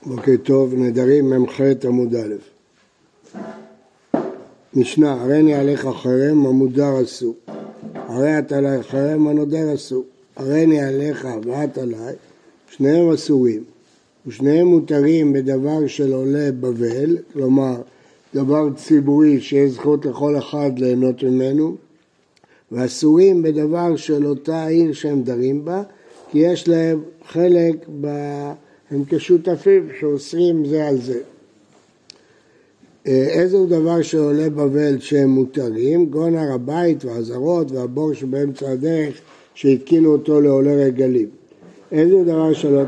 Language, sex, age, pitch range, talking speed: Hebrew, male, 60-79, 135-160 Hz, 110 wpm